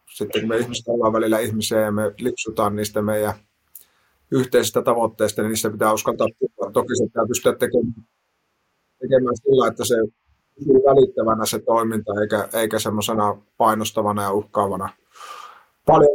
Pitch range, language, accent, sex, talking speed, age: 105-125 Hz, Finnish, native, male, 140 wpm, 30-49